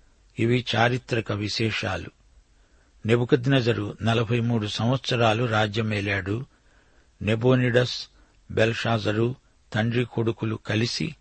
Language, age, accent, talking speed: Telugu, 60-79, native, 70 wpm